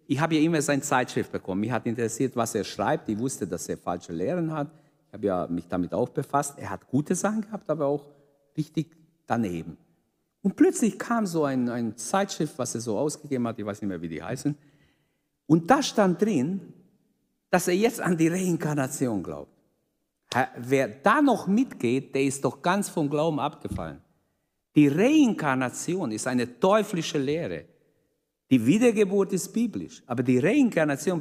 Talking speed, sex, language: 170 wpm, male, German